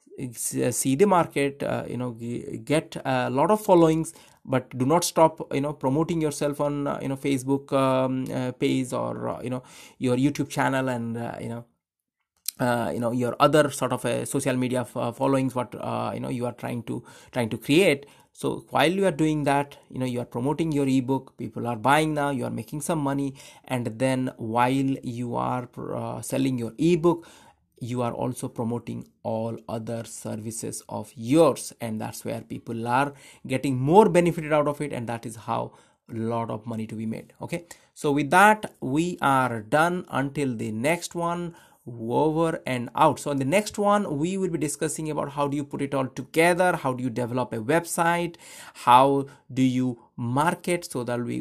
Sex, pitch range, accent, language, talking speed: male, 120-155 Hz, Indian, English, 200 wpm